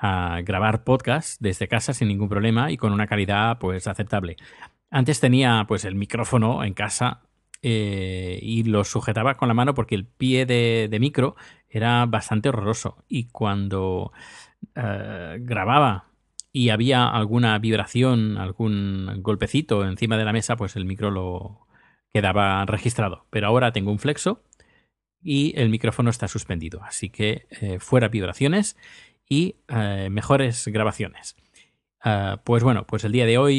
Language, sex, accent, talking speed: Spanish, male, Spanish, 150 wpm